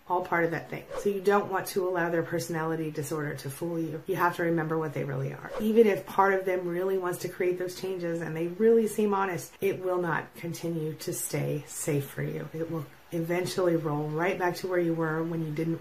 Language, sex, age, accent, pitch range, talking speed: English, female, 30-49, American, 165-200 Hz, 235 wpm